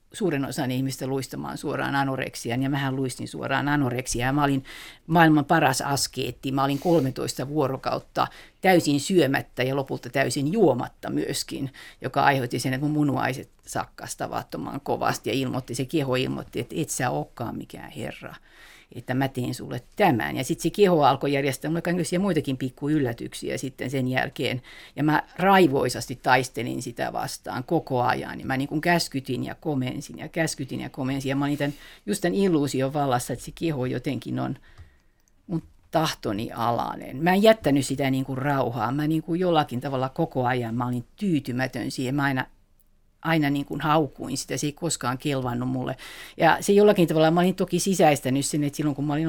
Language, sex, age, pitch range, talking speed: Finnish, female, 50-69, 130-155 Hz, 175 wpm